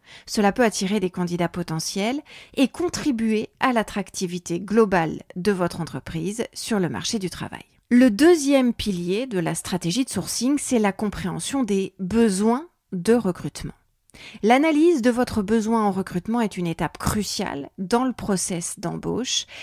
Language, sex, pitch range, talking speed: French, female, 180-235 Hz, 145 wpm